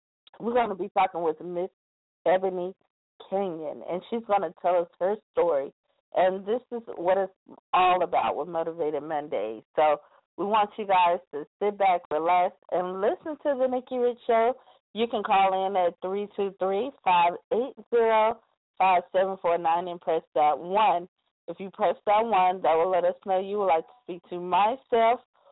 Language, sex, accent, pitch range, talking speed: English, female, American, 180-230 Hz, 165 wpm